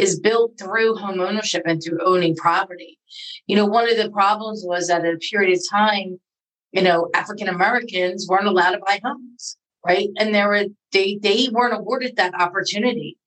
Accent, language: American, English